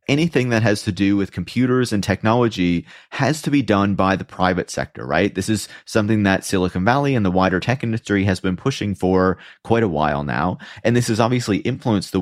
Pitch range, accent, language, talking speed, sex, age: 95-110 Hz, American, English, 210 wpm, male, 30-49